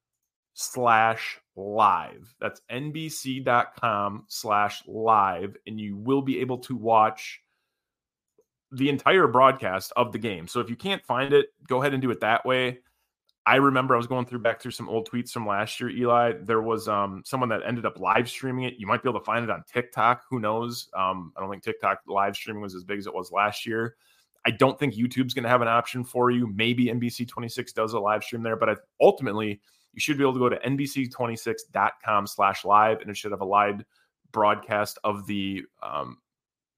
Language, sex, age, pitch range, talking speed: English, male, 20-39, 105-130 Hz, 200 wpm